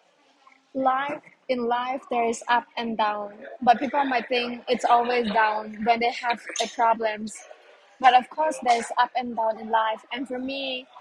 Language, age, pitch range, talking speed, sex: English, 20-39, 230-260 Hz, 175 wpm, female